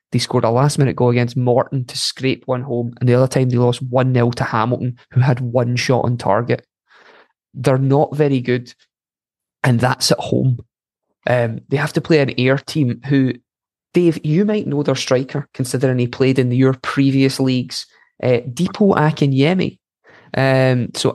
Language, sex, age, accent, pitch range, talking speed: English, male, 20-39, British, 120-135 Hz, 170 wpm